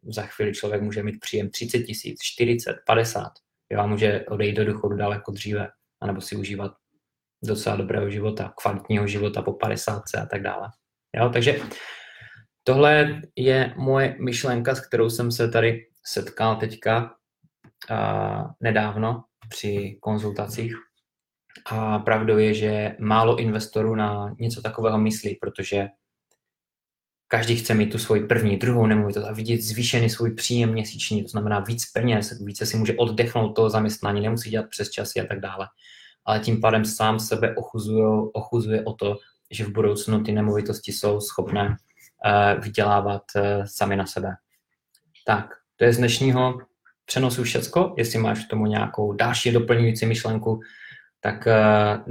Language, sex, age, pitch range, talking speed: Czech, male, 20-39, 105-115 Hz, 145 wpm